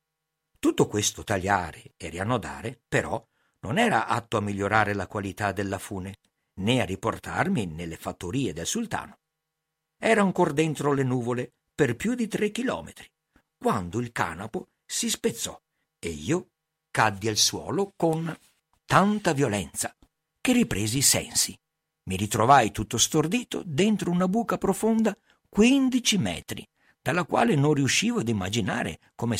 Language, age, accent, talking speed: Italian, 50-69, native, 135 wpm